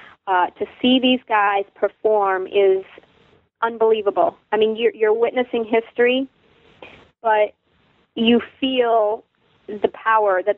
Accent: American